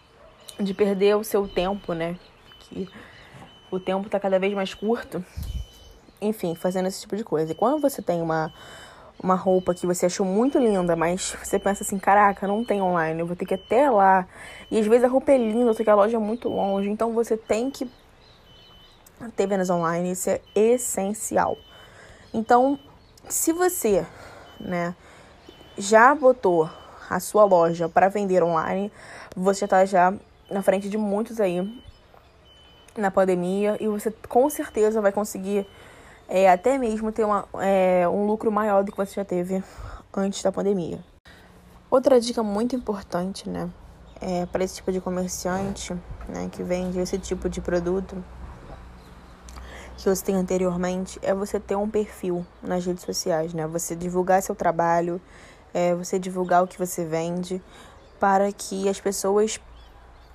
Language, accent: Portuguese, Brazilian